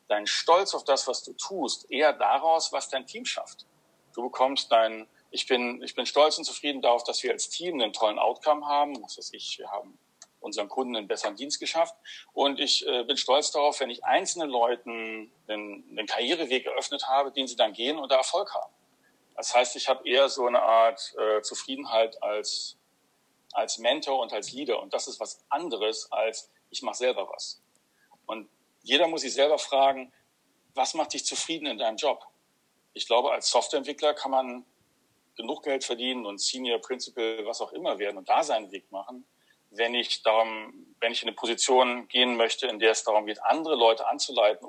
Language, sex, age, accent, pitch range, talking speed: German, male, 40-59, German, 115-160 Hz, 195 wpm